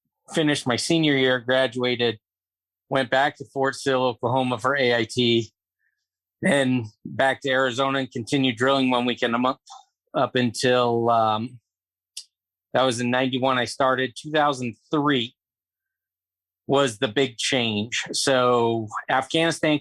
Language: English